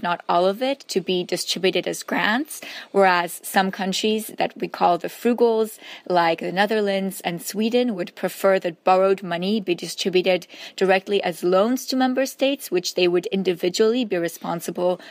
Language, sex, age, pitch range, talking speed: English, female, 20-39, 180-210 Hz, 165 wpm